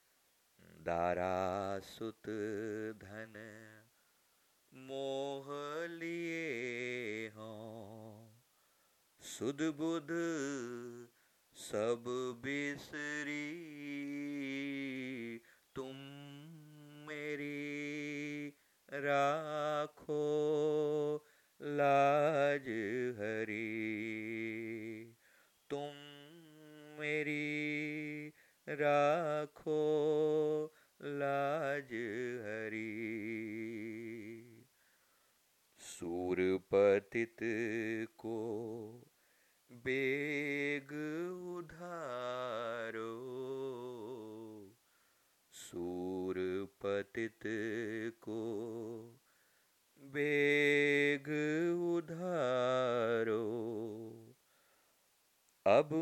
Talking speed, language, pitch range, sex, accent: 30 wpm, Hindi, 110-150 Hz, male, native